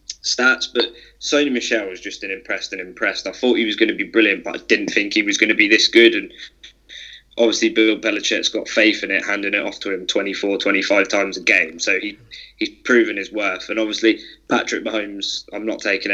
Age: 20-39